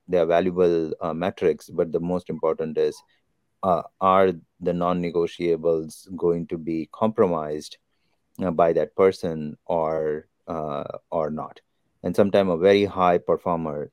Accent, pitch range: Indian, 85-100 Hz